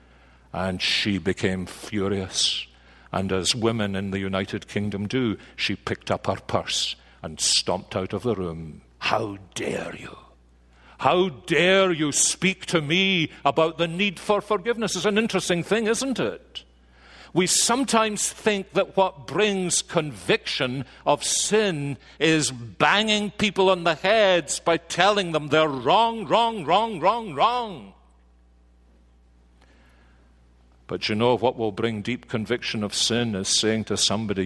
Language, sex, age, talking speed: English, male, 60-79, 140 wpm